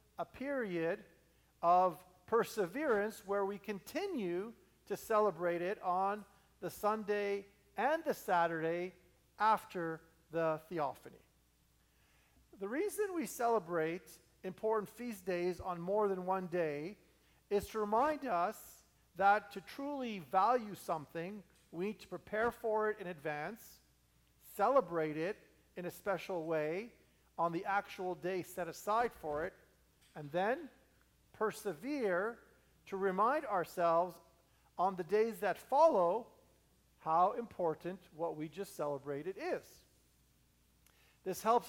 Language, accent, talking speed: English, American, 120 wpm